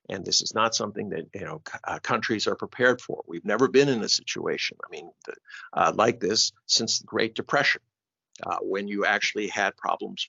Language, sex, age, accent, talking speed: English, male, 50-69, American, 205 wpm